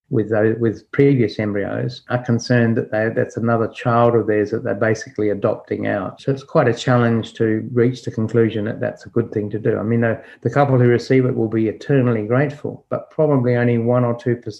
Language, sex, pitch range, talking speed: English, male, 110-125 Hz, 215 wpm